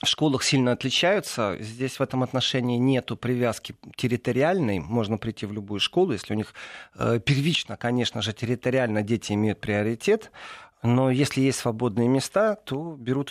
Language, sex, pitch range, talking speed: Russian, male, 105-130 Hz, 150 wpm